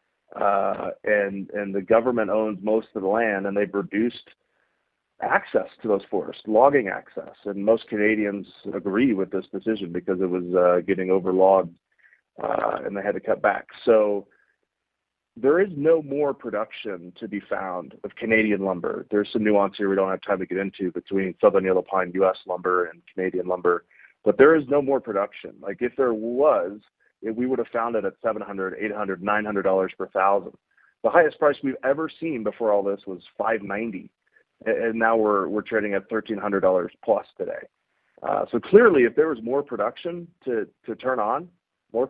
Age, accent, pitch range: 30-49, American, 95-120 Hz